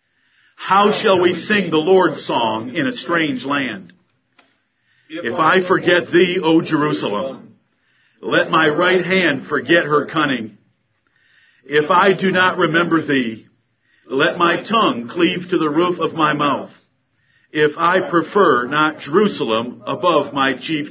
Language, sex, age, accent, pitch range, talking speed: English, male, 50-69, American, 150-185 Hz, 140 wpm